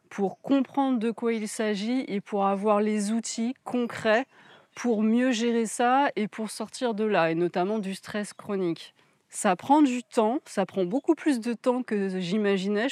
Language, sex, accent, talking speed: French, female, French, 175 wpm